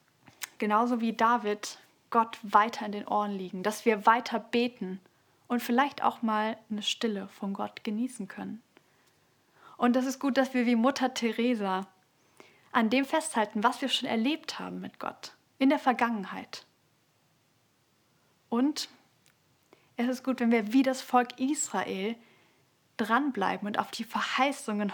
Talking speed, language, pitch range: 145 wpm, German, 200-245 Hz